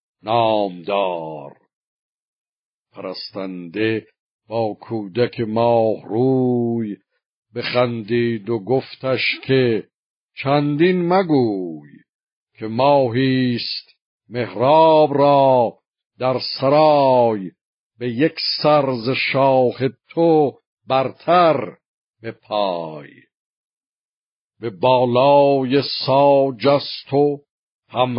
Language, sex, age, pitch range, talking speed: Persian, male, 60-79, 120-145 Hz, 60 wpm